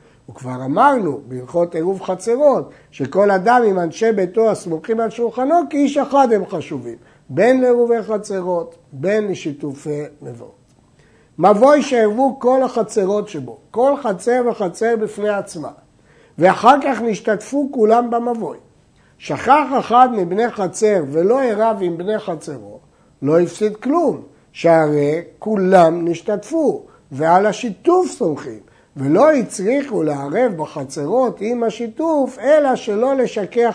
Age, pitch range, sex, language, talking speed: 60-79, 165-245 Hz, male, Hebrew, 115 wpm